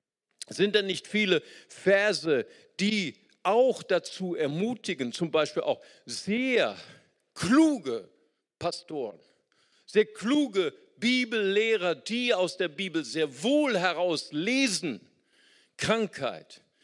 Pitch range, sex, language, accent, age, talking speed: 155-230 Hz, male, German, German, 50-69, 95 wpm